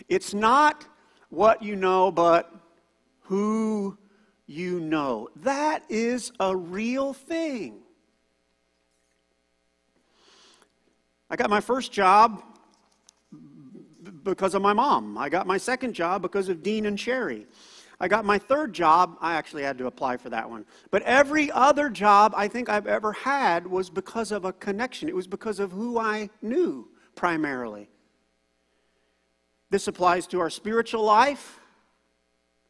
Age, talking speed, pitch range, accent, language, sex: 40-59, 140 wpm, 160-220 Hz, American, English, male